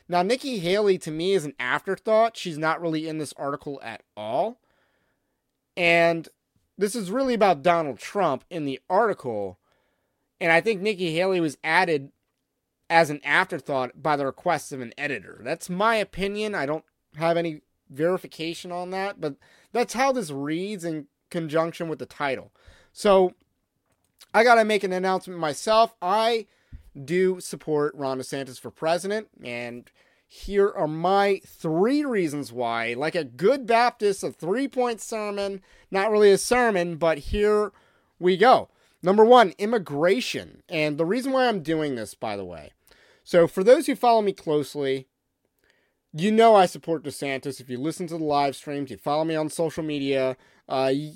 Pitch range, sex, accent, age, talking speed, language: 145-200 Hz, male, American, 30-49, 160 wpm, English